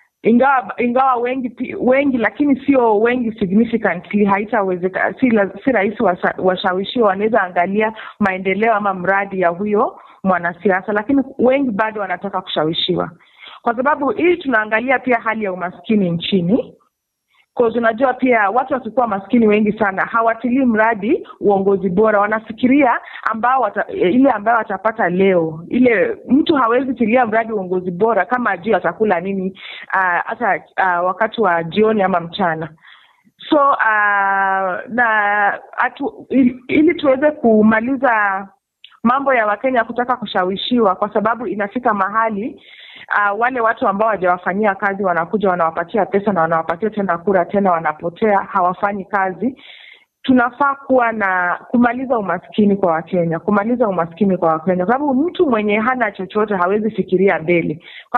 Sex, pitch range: female, 190-240 Hz